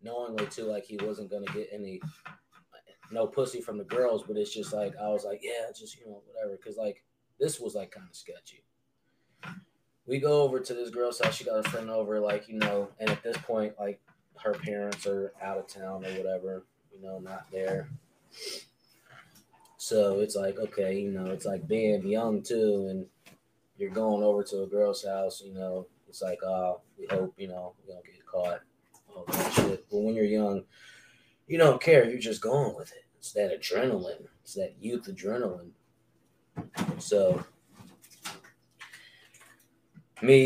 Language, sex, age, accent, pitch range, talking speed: English, male, 20-39, American, 95-120 Hz, 180 wpm